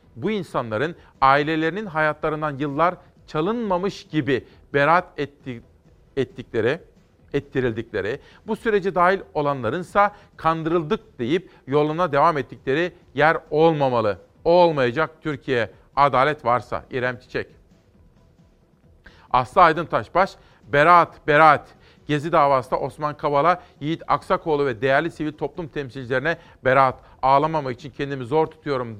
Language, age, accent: Turkish, 40-59, native